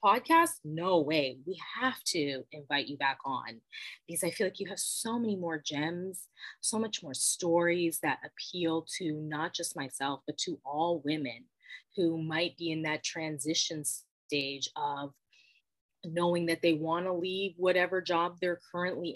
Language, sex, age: English, female, 20-39